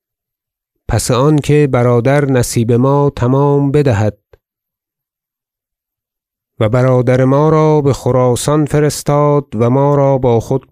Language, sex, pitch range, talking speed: Persian, male, 120-140 Hz, 105 wpm